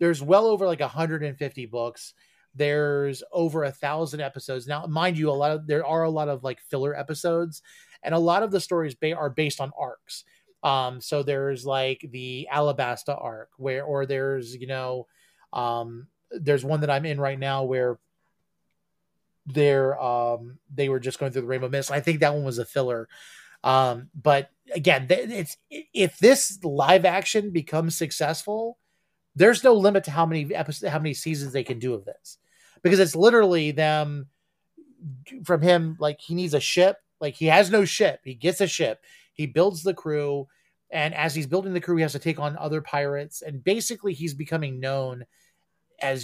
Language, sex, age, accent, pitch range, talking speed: English, male, 30-49, American, 135-170 Hz, 185 wpm